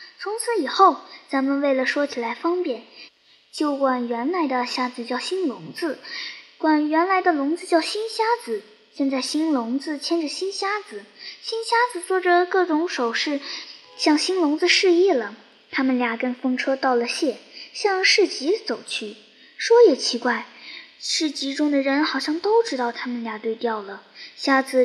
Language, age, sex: Chinese, 10-29, male